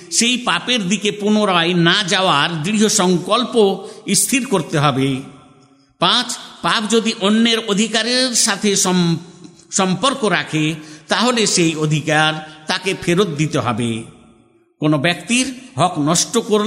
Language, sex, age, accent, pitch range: Bengali, male, 50-69, native, 165-225 Hz